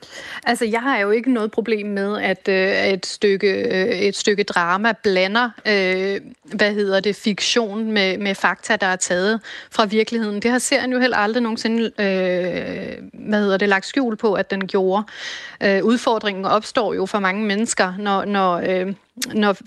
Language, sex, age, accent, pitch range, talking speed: Danish, female, 30-49, native, 200-230 Hz, 145 wpm